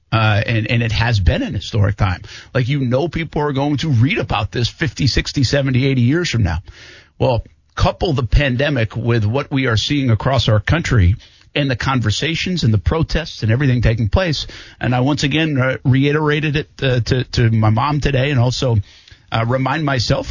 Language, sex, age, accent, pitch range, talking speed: English, male, 50-69, American, 110-145 Hz, 195 wpm